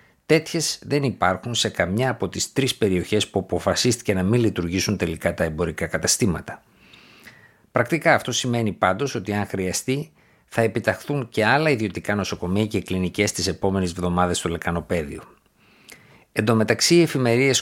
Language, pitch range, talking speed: Greek, 90-120 Hz, 140 wpm